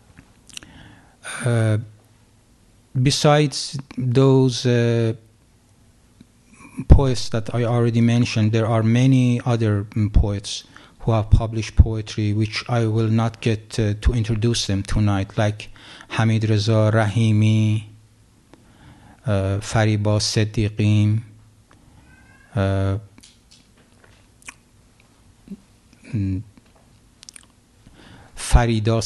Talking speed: 75 wpm